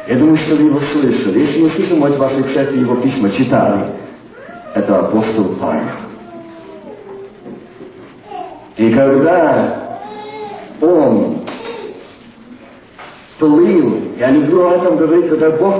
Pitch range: 150-250 Hz